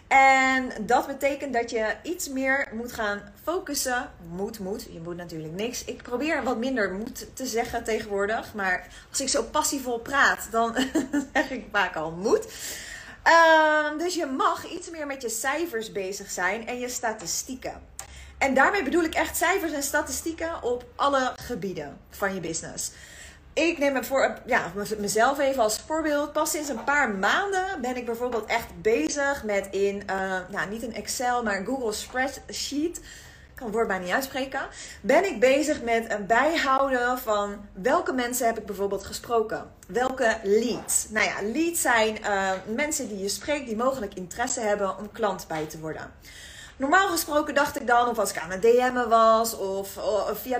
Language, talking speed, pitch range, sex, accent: Dutch, 175 wpm, 210-280 Hz, female, Dutch